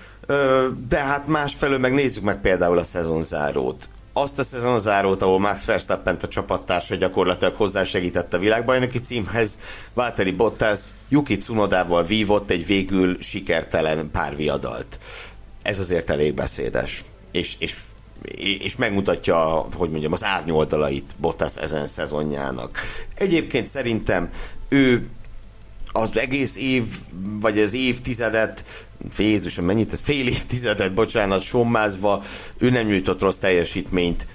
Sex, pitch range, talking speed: male, 85-115 Hz, 115 wpm